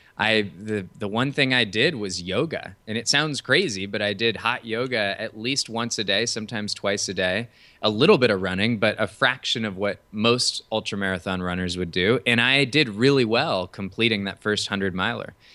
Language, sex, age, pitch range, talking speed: English, male, 20-39, 100-120 Hz, 205 wpm